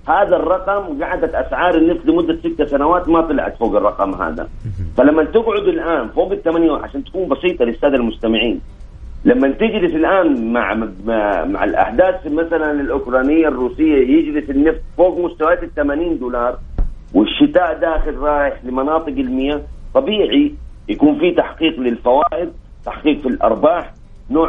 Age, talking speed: 40-59, 130 wpm